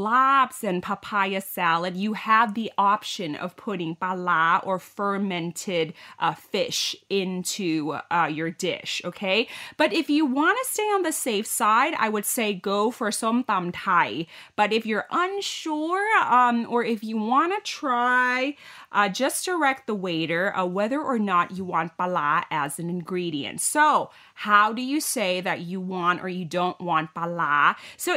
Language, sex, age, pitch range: Thai, female, 30-49, 175-245 Hz